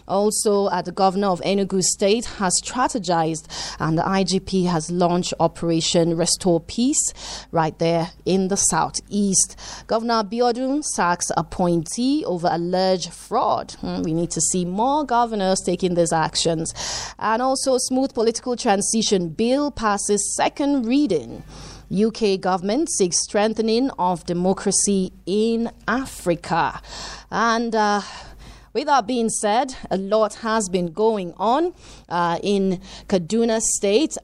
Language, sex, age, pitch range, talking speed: English, female, 30-49, 180-230 Hz, 130 wpm